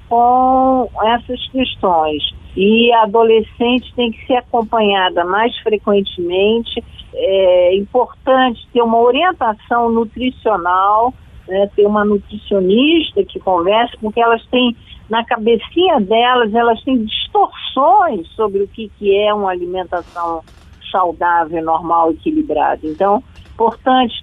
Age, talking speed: 50-69, 110 wpm